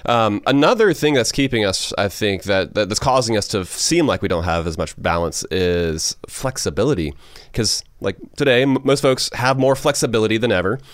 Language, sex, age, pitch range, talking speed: English, male, 30-49, 95-125 Hz, 185 wpm